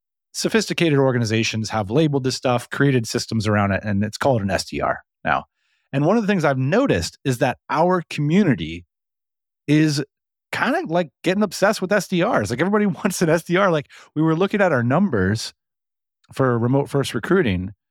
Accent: American